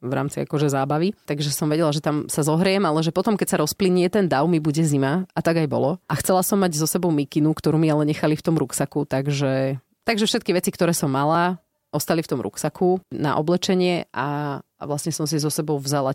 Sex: female